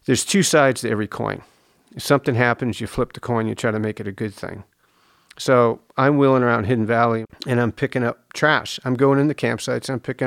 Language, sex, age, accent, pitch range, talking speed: English, male, 50-69, American, 115-150 Hz, 230 wpm